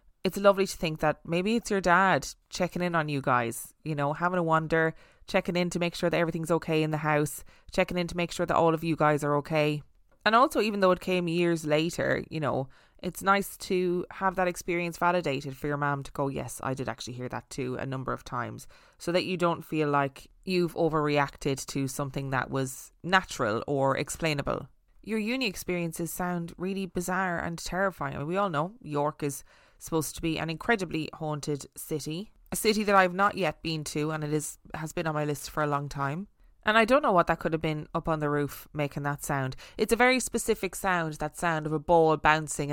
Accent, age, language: Irish, 20-39, English